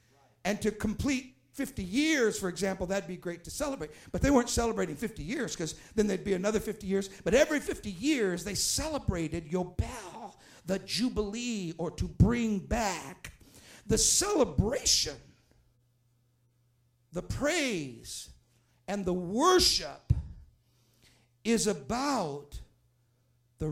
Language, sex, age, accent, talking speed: English, male, 50-69, American, 120 wpm